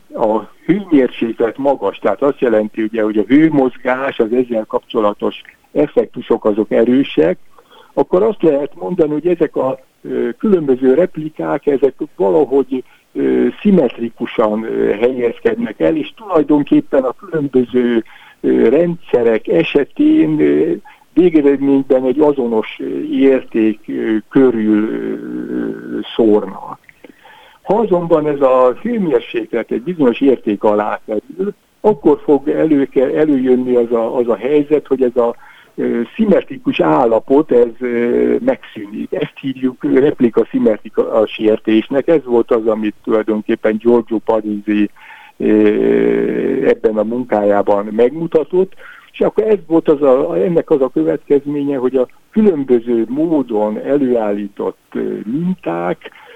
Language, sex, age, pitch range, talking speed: Hungarian, male, 60-79, 115-165 Hz, 110 wpm